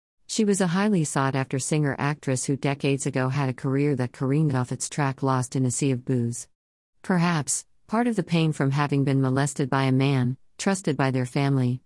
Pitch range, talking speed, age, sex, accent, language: 130-160 Hz, 195 wpm, 50-69, female, American, English